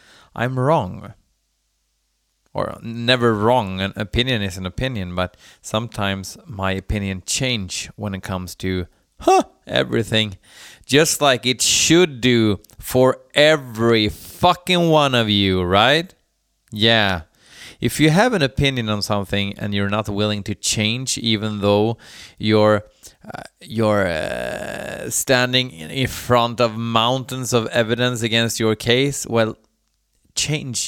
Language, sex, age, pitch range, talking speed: Swedish, male, 20-39, 100-130 Hz, 125 wpm